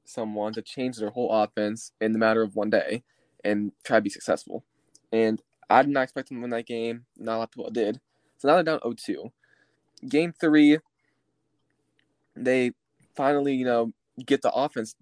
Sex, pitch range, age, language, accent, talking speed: male, 120-155 Hz, 20-39, English, American, 190 wpm